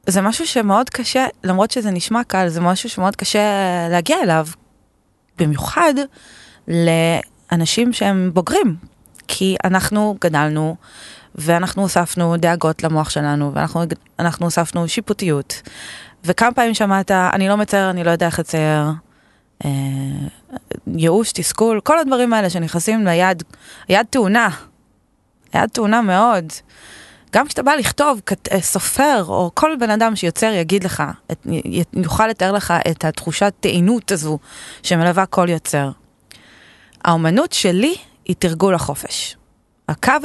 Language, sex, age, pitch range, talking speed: Hebrew, female, 20-39, 165-215 Hz, 120 wpm